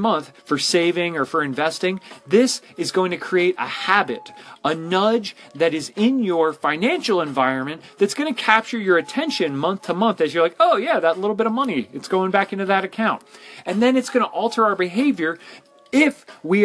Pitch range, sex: 165-230 Hz, male